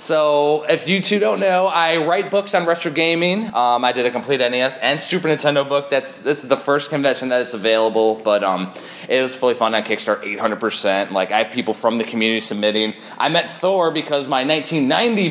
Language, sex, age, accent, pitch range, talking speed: English, male, 20-39, American, 115-175 Hz, 210 wpm